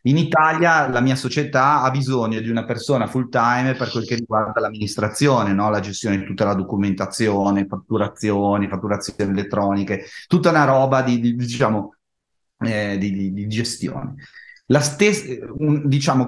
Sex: male